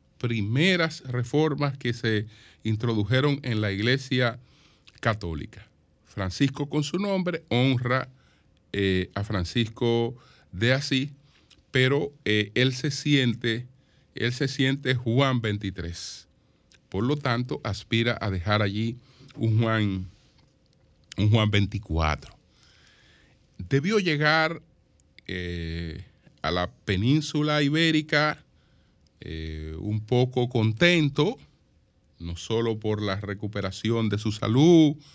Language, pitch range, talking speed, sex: Spanish, 100-135 Hz, 100 wpm, male